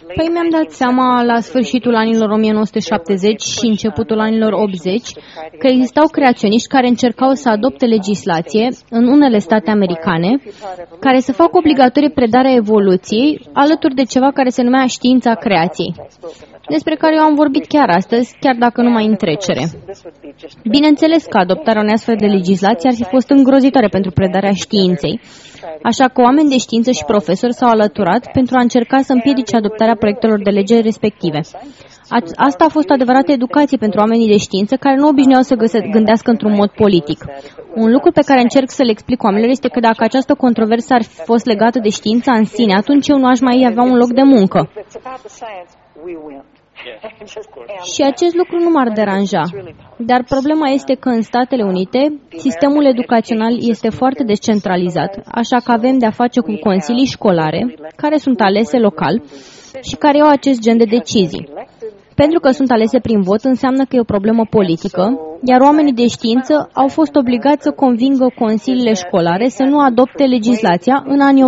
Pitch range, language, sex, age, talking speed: 210-265 Hz, Romanian, female, 20-39, 165 wpm